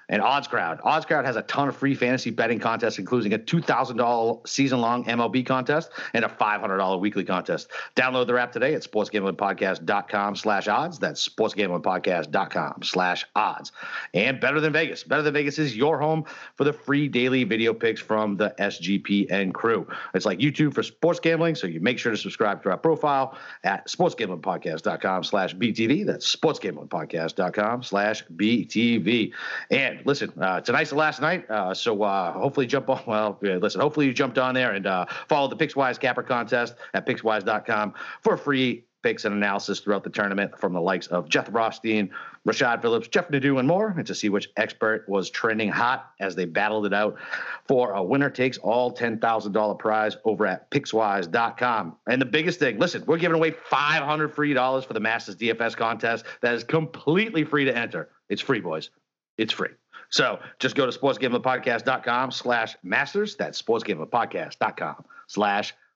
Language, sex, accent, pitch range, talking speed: English, male, American, 105-140 Hz, 180 wpm